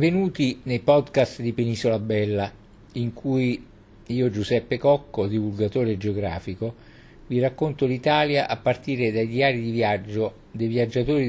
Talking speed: 130 wpm